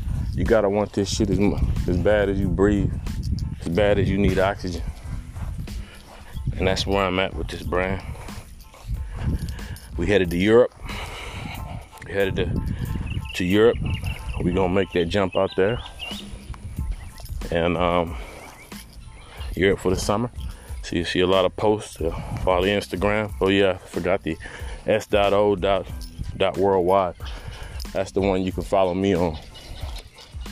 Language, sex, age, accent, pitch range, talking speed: English, male, 20-39, American, 85-100 Hz, 145 wpm